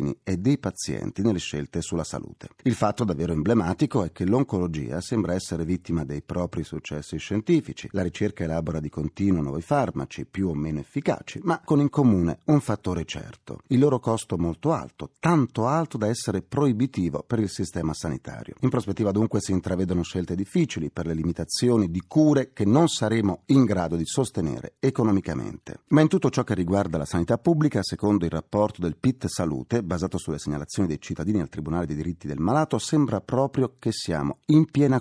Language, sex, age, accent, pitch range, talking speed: Italian, male, 40-59, native, 85-125 Hz, 180 wpm